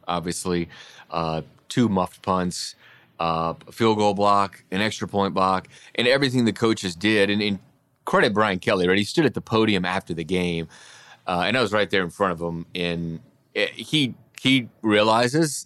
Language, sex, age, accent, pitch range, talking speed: English, male, 30-49, American, 95-120 Hz, 180 wpm